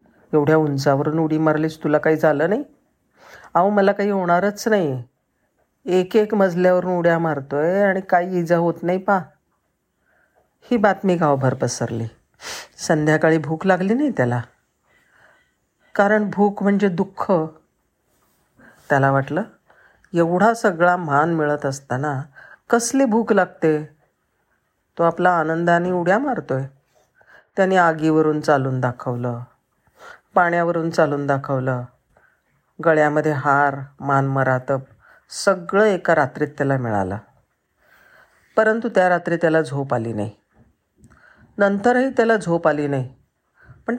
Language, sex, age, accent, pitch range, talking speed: Marathi, female, 50-69, native, 135-185 Hz, 110 wpm